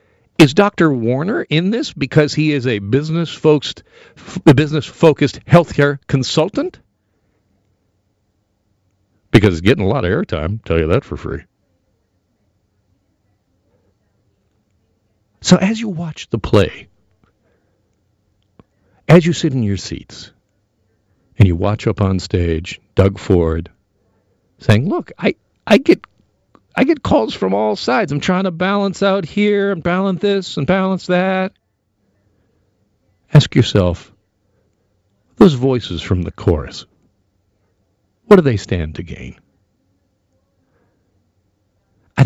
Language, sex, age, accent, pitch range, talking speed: English, male, 50-69, American, 100-155 Hz, 120 wpm